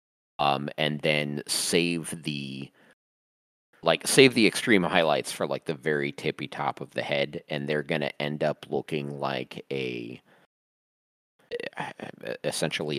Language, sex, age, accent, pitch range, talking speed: English, male, 30-49, American, 65-75 Hz, 135 wpm